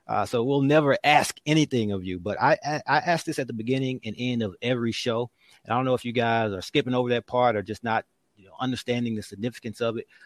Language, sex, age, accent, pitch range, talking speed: English, male, 30-49, American, 100-120 Hz, 260 wpm